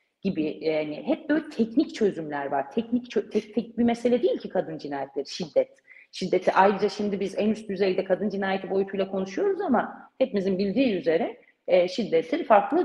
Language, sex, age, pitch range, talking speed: Turkish, female, 40-59, 165-235 Hz, 170 wpm